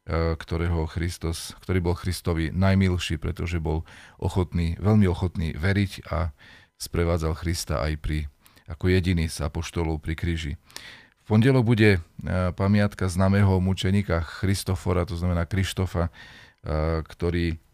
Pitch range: 85-100 Hz